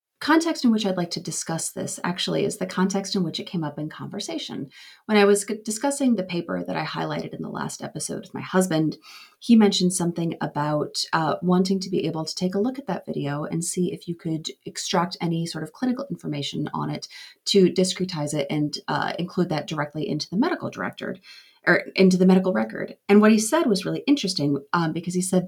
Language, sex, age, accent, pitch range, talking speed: English, female, 30-49, American, 160-200 Hz, 215 wpm